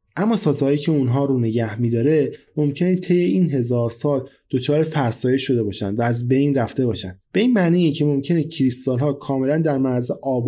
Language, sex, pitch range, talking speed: Persian, male, 125-165 Hz, 185 wpm